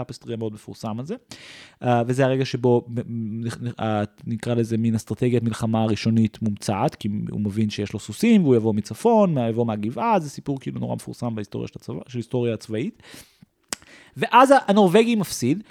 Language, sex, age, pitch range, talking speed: Hebrew, male, 30-49, 125-205 Hz, 155 wpm